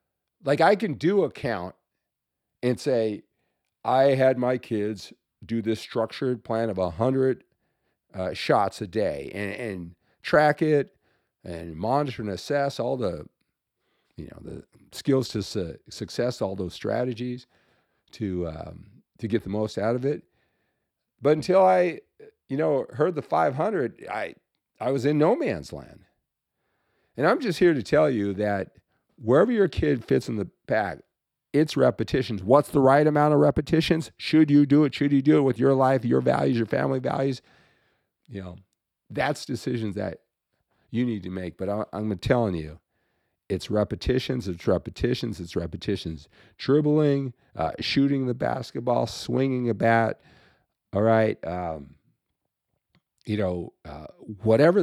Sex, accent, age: male, American, 50-69